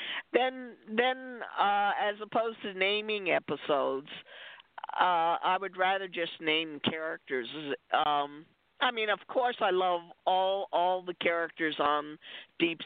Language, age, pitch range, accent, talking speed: English, 50-69, 155-225 Hz, American, 130 wpm